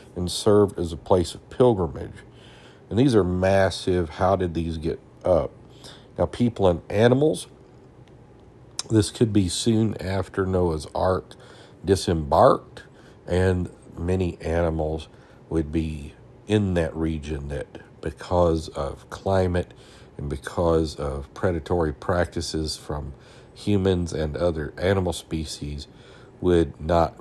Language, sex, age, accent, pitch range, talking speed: English, male, 50-69, American, 80-105 Hz, 115 wpm